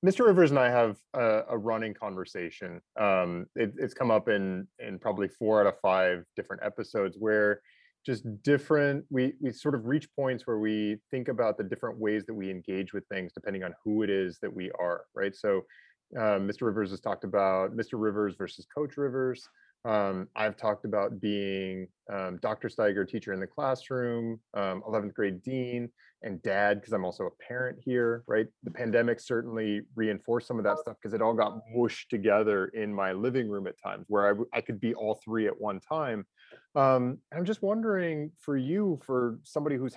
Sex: male